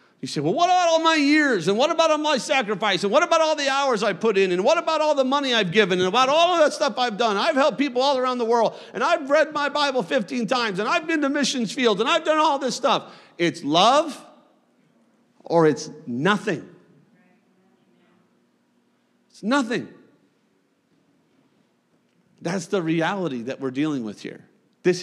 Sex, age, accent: male, 50-69, American